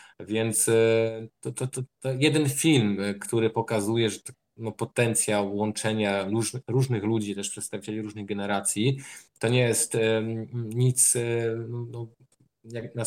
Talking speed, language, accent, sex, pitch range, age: 110 wpm, Polish, native, male, 105-120 Hz, 20-39